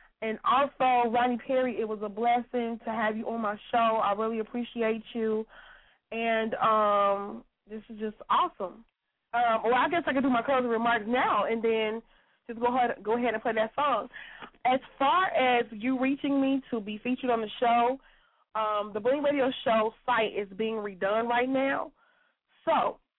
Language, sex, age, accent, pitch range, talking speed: English, female, 20-39, American, 215-250 Hz, 180 wpm